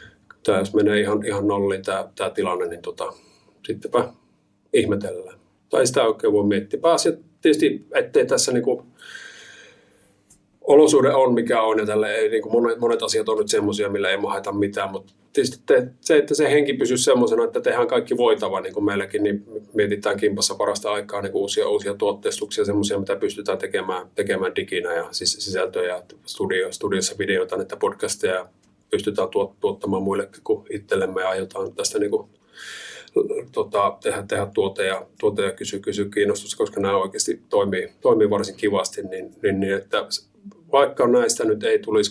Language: Finnish